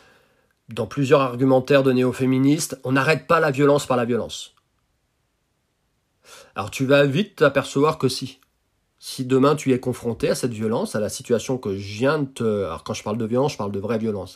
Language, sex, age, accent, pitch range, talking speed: French, male, 40-59, French, 120-155 Hz, 195 wpm